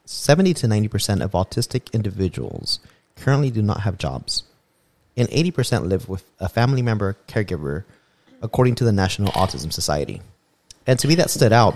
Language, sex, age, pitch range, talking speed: English, male, 30-49, 95-120 Hz, 170 wpm